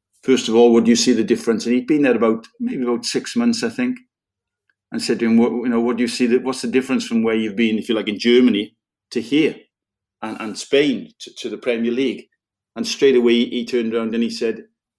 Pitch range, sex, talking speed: 110-125 Hz, male, 255 wpm